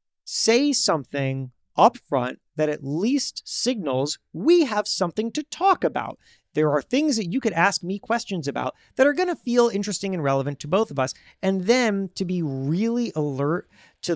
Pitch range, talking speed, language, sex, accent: 145-220 Hz, 180 wpm, English, male, American